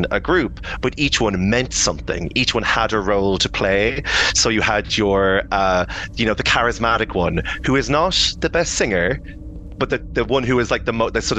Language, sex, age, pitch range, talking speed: English, male, 30-49, 95-120 Hz, 215 wpm